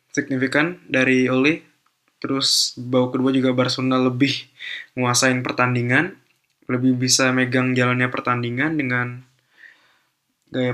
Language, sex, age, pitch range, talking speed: Indonesian, male, 20-39, 125-140 Hz, 100 wpm